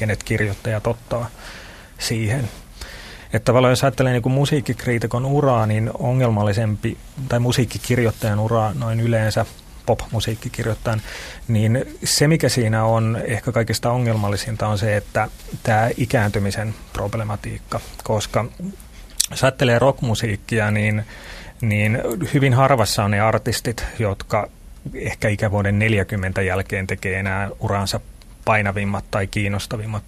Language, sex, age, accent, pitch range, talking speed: Finnish, male, 30-49, native, 105-115 Hz, 110 wpm